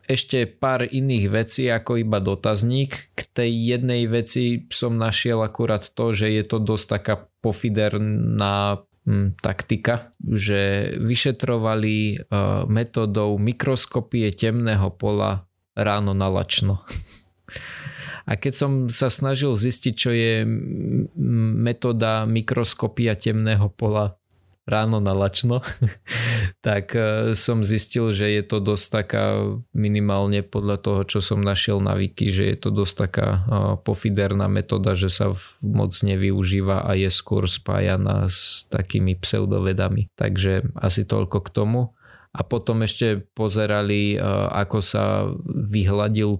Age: 20-39